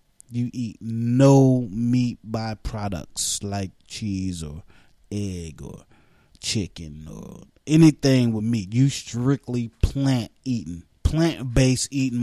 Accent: American